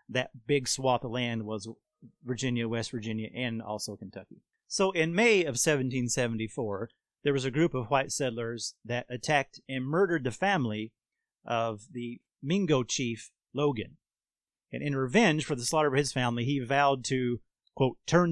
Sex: male